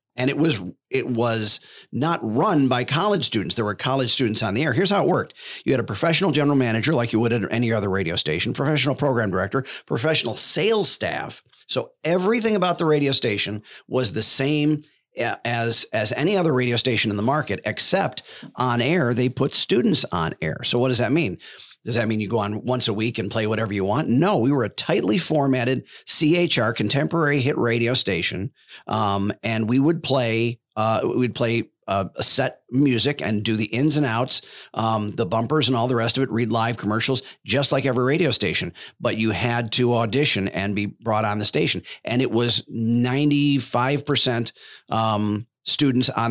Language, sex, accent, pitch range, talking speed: English, male, American, 110-140 Hz, 195 wpm